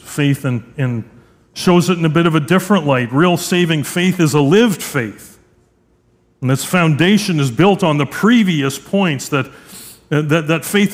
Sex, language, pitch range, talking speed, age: male, English, 135-180 Hz, 170 wpm, 40-59